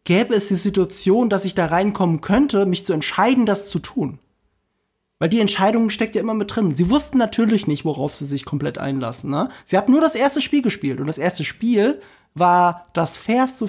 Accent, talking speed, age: German, 205 wpm, 20-39